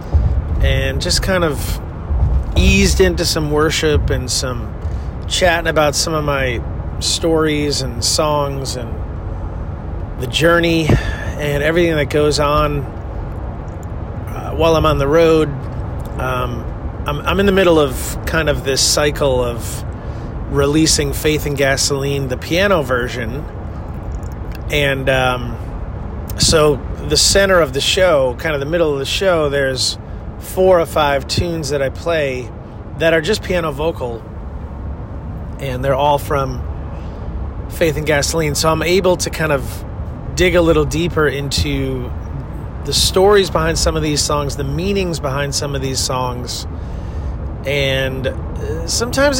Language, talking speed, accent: English, 135 wpm, American